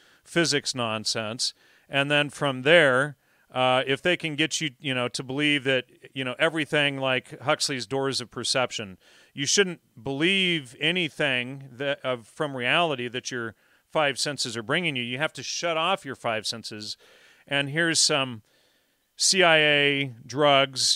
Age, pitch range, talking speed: 40-59, 125-145 Hz, 155 wpm